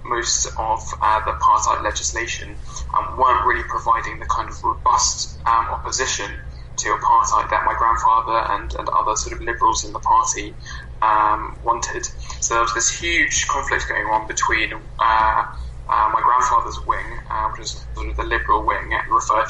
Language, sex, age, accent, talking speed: English, male, 10-29, British, 170 wpm